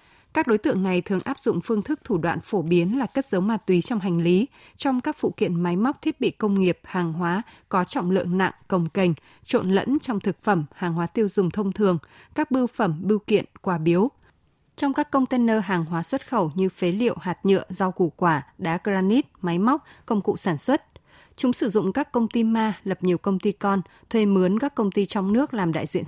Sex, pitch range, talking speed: female, 180-225 Hz, 235 wpm